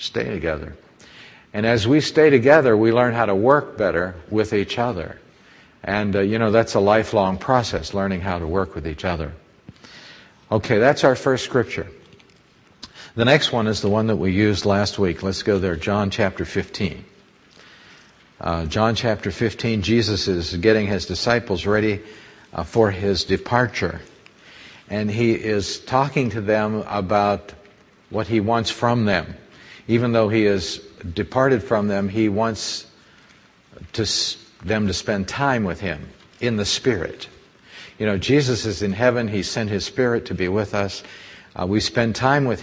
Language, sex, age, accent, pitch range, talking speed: English, male, 50-69, American, 95-115 Hz, 165 wpm